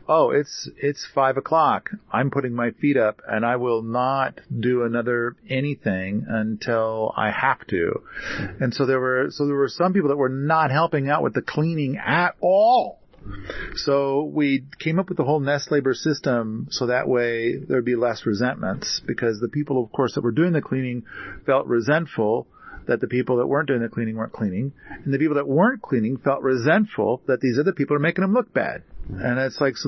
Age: 40-59